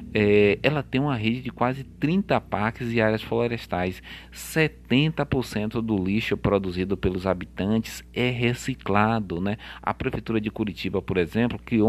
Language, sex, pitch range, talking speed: Portuguese, male, 95-120 Hz, 135 wpm